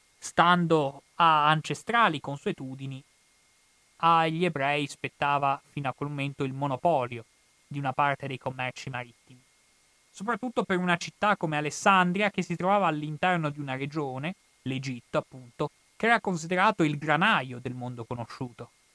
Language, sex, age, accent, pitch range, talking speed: Italian, male, 30-49, native, 135-185 Hz, 135 wpm